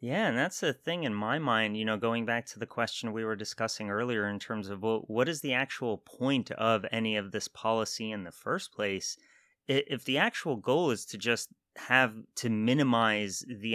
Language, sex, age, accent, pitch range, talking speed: English, male, 30-49, American, 110-125 Hz, 205 wpm